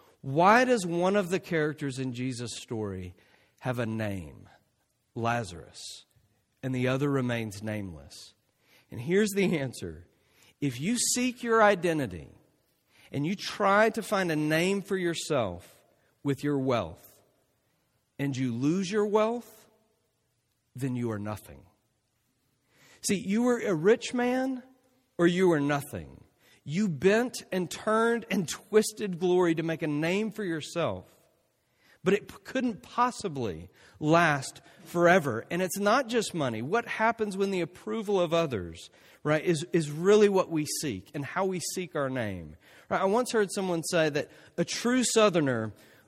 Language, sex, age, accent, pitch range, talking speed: English, male, 50-69, American, 120-200 Hz, 145 wpm